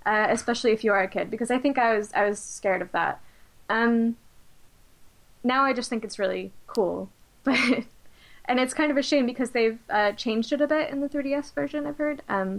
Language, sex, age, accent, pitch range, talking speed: English, female, 10-29, American, 200-250 Hz, 225 wpm